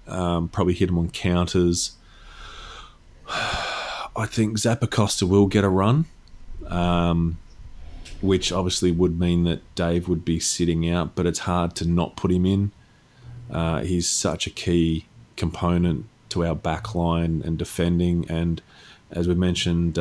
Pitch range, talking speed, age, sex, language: 80-95 Hz, 145 wpm, 30-49, male, English